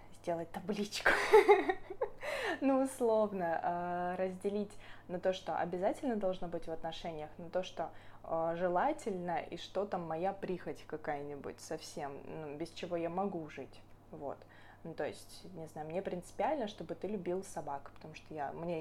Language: Russian